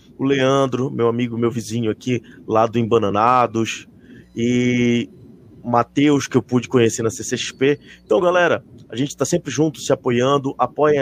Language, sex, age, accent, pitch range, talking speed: Portuguese, male, 20-39, Brazilian, 120-140 Hz, 160 wpm